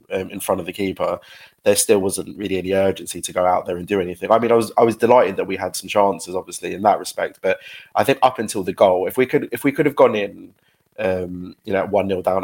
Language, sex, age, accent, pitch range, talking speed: English, male, 20-39, British, 95-110 Hz, 270 wpm